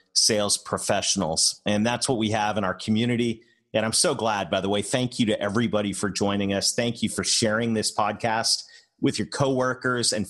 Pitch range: 100-120 Hz